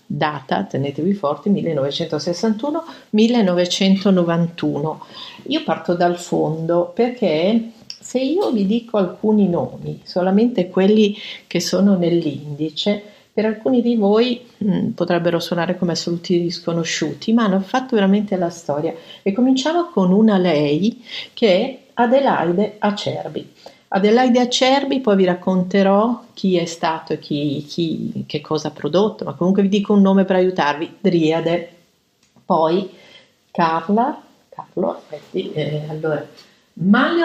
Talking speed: 120 wpm